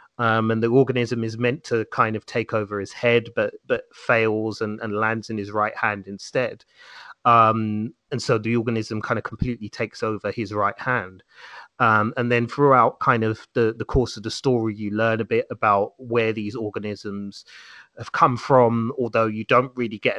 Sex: male